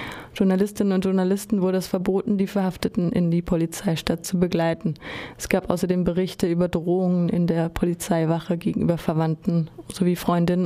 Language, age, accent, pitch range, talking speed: German, 30-49, German, 170-195 Hz, 145 wpm